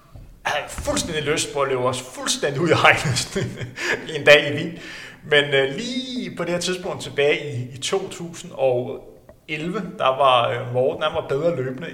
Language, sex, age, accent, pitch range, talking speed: Danish, male, 30-49, native, 125-170 Hz, 165 wpm